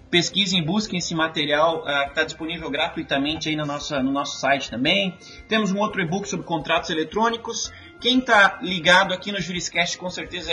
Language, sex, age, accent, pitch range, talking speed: Portuguese, male, 30-49, Brazilian, 160-195 Hz, 170 wpm